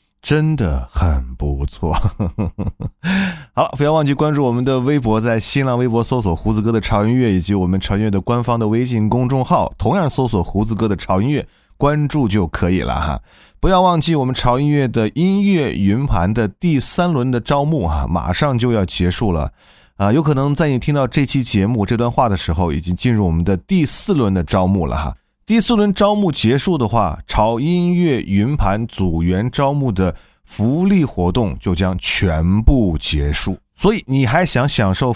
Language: Chinese